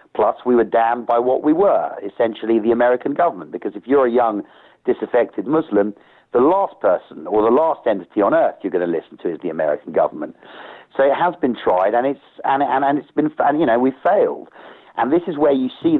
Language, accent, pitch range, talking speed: English, British, 115-155 Hz, 230 wpm